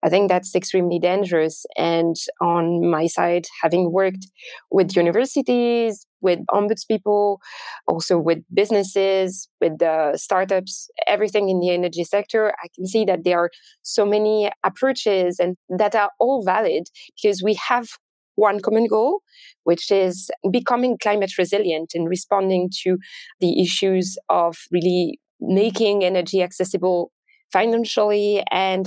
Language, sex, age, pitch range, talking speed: English, female, 20-39, 175-210 Hz, 130 wpm